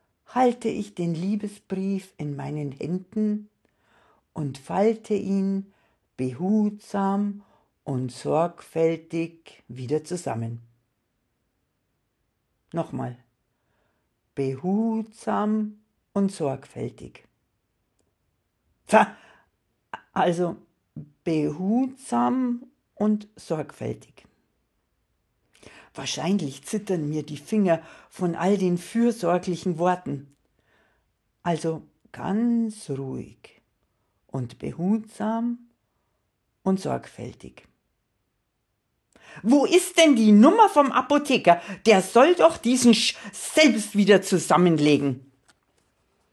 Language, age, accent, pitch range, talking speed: German, 60-79, German, 140-215 Hz, 70 wpm